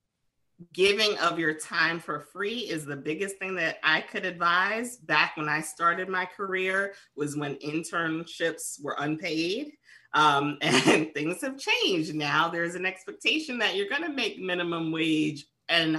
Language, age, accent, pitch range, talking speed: English, 30-49, American, 150-185 Hz, 160 wpm